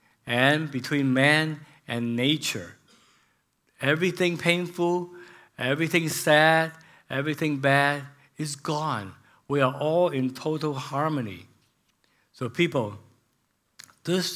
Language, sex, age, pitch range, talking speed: English, male, 60-79, 125-170 Hz, 90 wpm